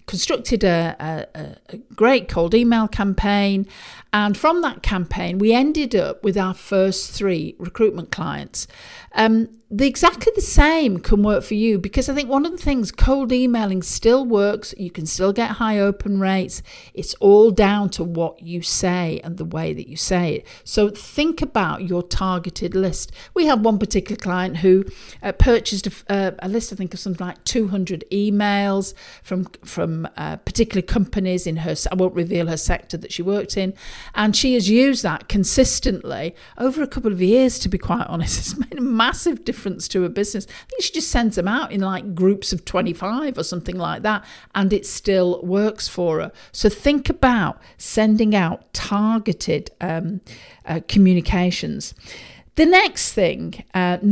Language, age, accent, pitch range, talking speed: English, 50-69, British, 185-235 Hz, 175 wpm